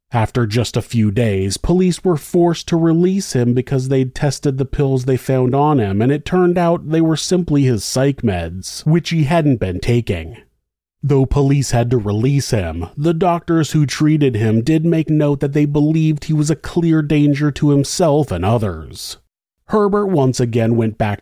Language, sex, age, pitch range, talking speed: English, male, 30-49, 115-160 Hz, 185 wpm